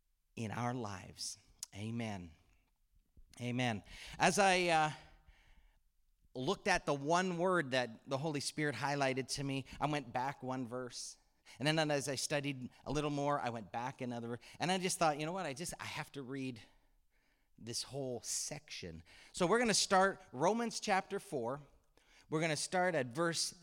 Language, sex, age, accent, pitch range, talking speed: English, male, 40-59, American, 130-185 Hz, 170 wpm